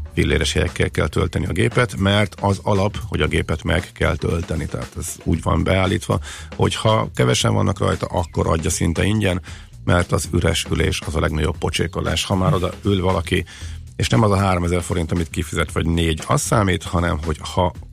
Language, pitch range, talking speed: Hungarian, 85-100 Hz, 185 wpm